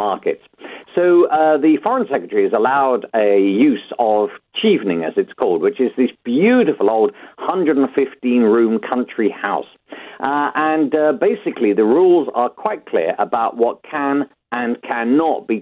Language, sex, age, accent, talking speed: English, male, 50-69, British, 145 wpm